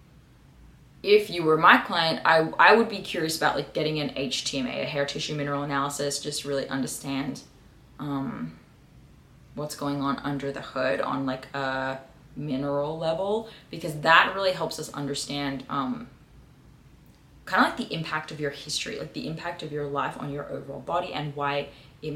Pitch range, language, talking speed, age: 140-180 Hz, English, 170 wpm, 20-39